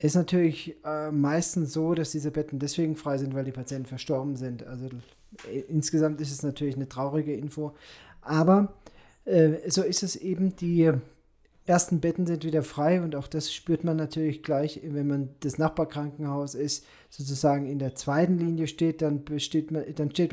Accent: German